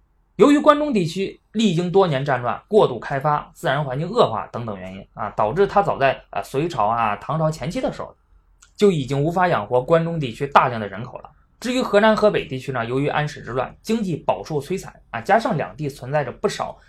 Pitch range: 125-185 Hz